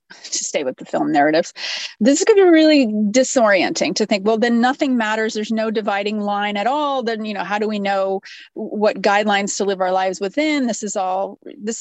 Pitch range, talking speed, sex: 210-275 Hz, 220 wpm, female